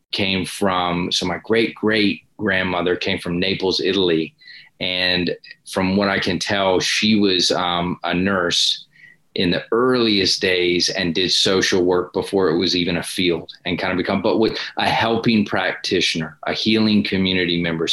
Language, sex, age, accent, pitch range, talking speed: English, male, 30-49, American, 90-100 Hz, 165 wpm